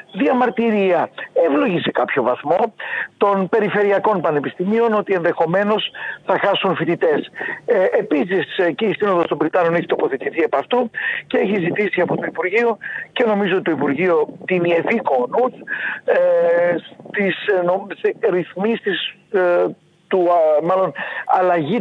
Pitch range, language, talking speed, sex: 175-245 Hz, Greek, 120 wpm, male